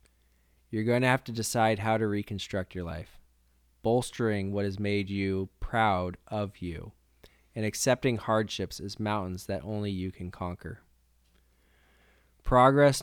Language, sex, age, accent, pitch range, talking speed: English, male, 20-39, American, 85-110 Hz, 140 wpm